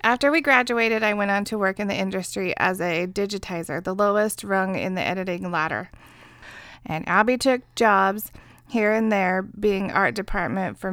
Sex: female